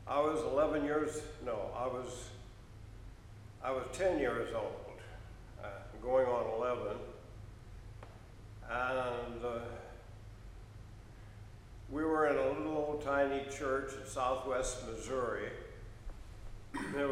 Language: English